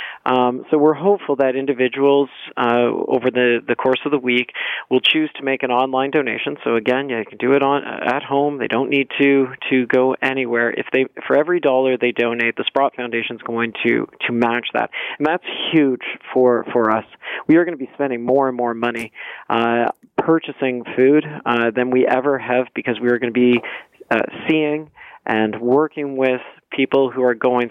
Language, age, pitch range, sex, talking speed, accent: English, 40-59, 115-135 Hz, male, 205 wpm, American